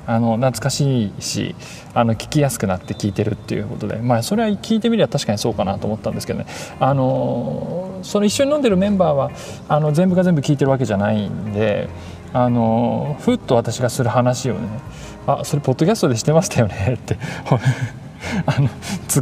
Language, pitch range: Japanese, 115-160 Hz